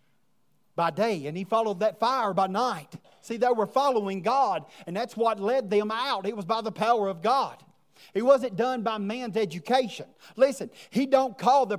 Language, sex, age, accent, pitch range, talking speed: English, male, 40-59, American, 185-230 Hz, 195 wpm